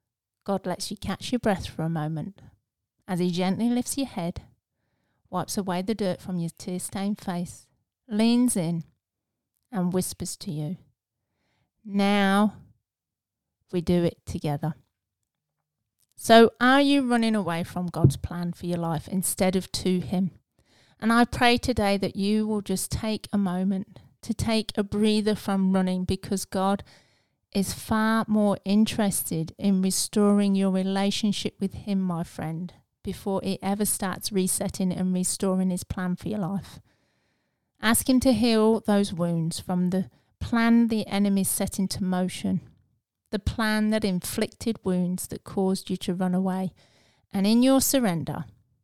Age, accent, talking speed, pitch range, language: 30-49, British, 150 wpm, 165-205 Hz, English